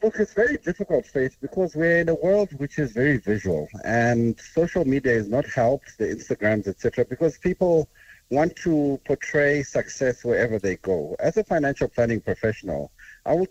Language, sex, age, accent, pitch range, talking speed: English, male, 50-69, South African, 115-150 Hz, 180 wpm